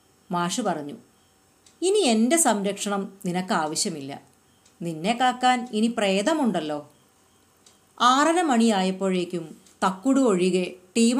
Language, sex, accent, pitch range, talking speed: Malayalam, female, native, 180-235 Hz, 75 wpm